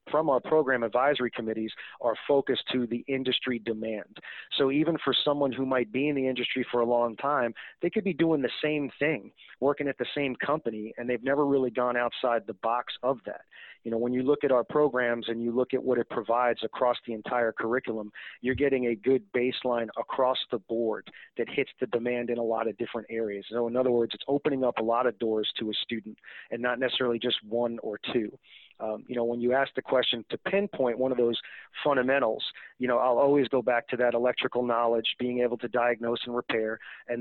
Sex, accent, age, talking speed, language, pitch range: male, American, 30-49, 220 wpm, English, 115-130 Hz